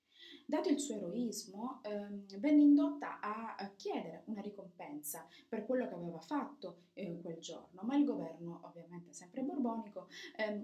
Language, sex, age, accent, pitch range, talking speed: Italian, female, 20-39, native, 185-270 Hz, 145 wpm